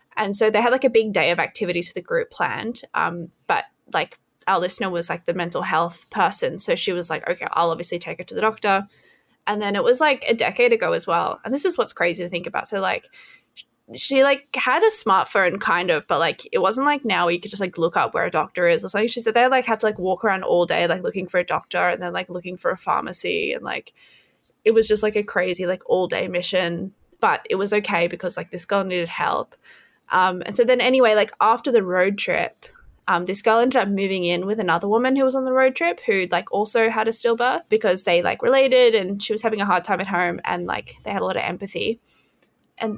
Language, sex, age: English, female, 10-29